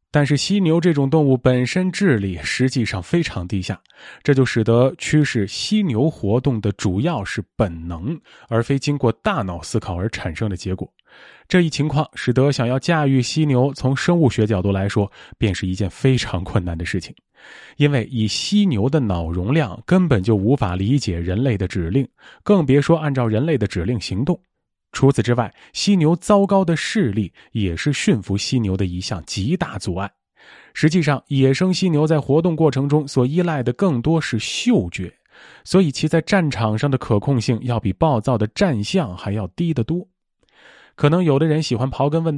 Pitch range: 105-155 Hz